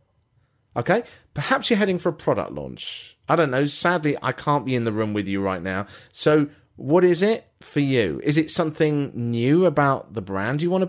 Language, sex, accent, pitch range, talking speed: English, male, British, 115-165 Hz, 210 wpm